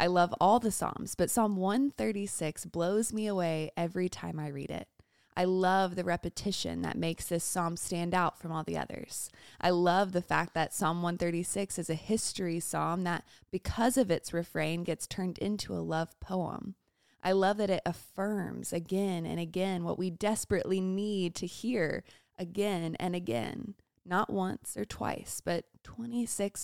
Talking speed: 170 wpm